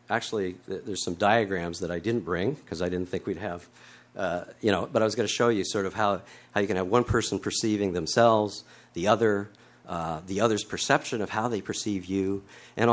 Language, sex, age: English, male, 50-69